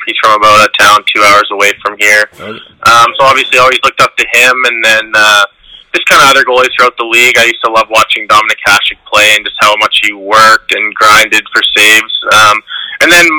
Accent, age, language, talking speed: American, 20-39, English, 230 wpm